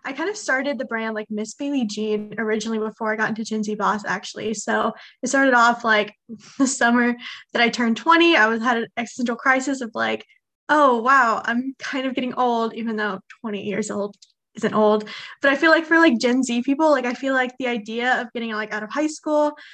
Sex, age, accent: female, 10-29, American